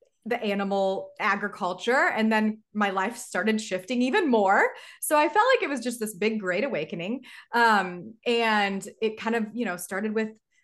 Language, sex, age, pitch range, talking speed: English, female, 20-39, 195-245 Hz, 175 wpm